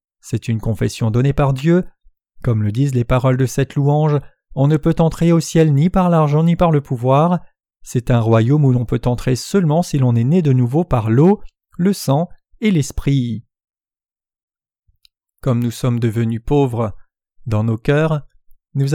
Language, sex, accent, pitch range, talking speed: French, male, French, 120-165 Hz, 175 wpm